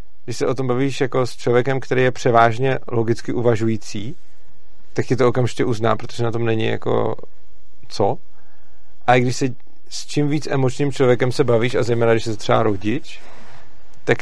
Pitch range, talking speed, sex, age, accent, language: 115-130 Hz, 175 wpm, male, 40-59, native, Czech